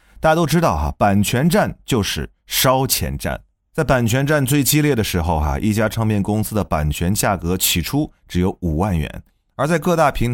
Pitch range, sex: 85-130 Hz, male